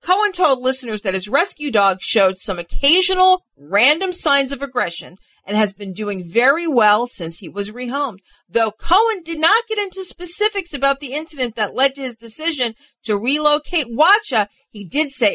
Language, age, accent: English, 40-59, American